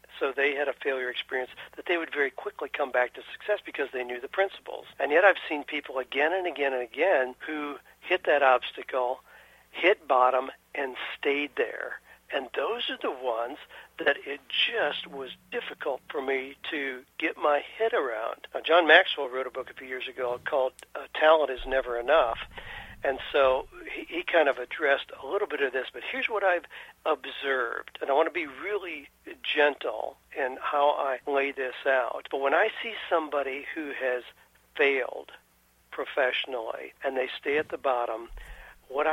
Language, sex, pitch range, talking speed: English, male, 130-170 Hz, 180 wpm